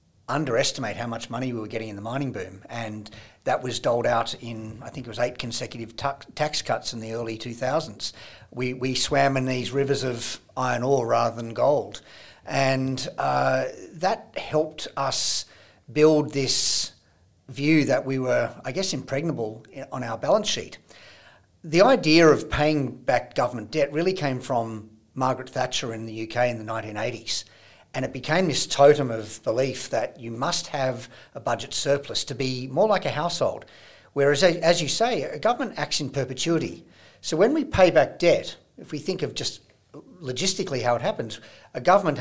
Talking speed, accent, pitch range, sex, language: 175 wpm, Australian, 115-140 Hz, male, English